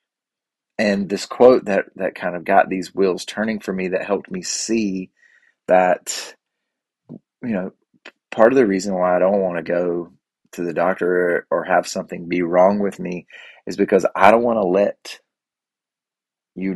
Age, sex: 30-49, male